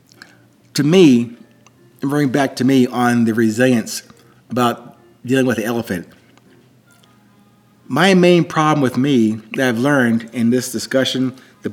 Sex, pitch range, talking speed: male, 120-150 Hz, 140 wpm